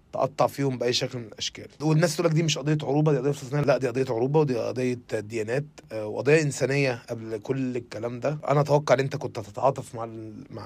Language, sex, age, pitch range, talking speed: Arabic, male, 20-39, 125-160 Hz, 210 wpm